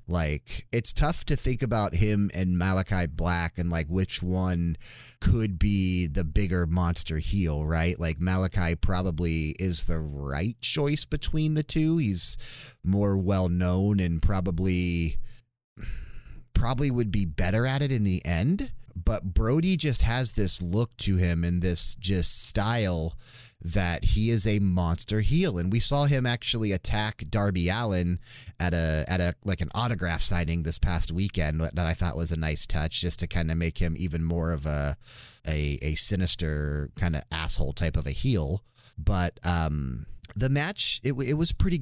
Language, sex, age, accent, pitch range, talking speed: English, male, 30-49, American, 85-115 Hz, 170 wpm